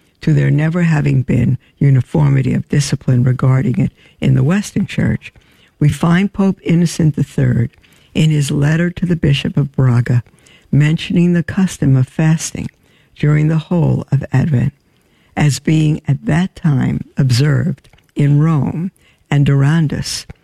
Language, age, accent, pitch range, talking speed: English, 60-79, American, 140-165 Hz, 140 wpm